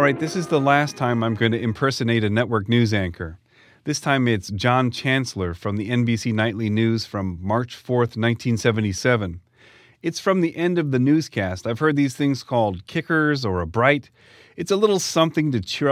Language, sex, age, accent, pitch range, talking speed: English, male, 30-49, American, 100-135 Hz, 190 wpm